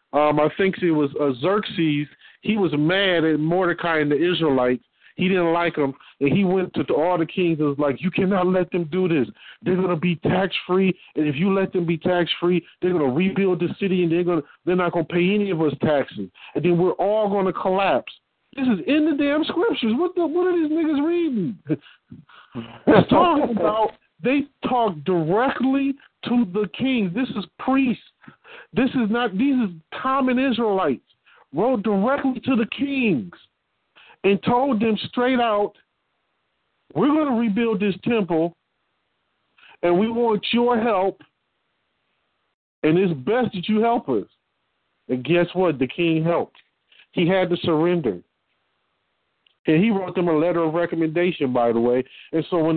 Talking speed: 175 wpm